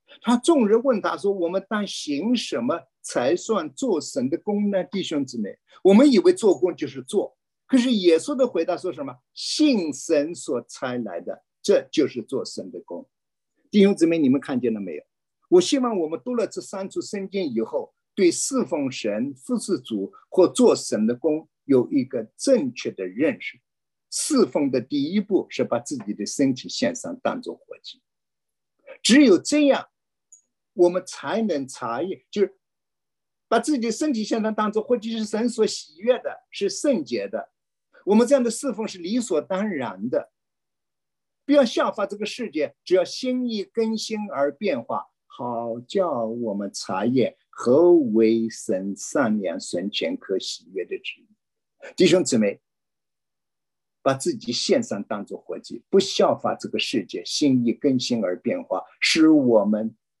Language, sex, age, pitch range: English, male, 50-69, 175-285 Hz